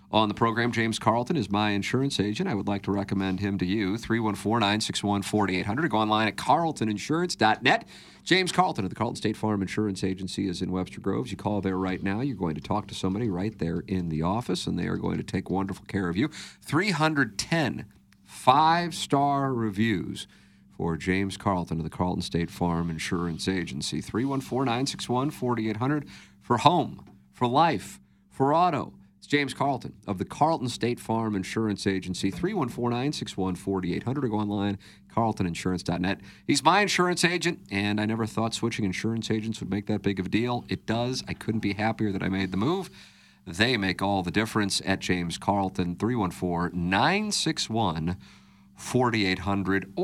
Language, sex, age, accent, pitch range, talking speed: English, male, 50-69, American, 95-115 Hz, 160 wpm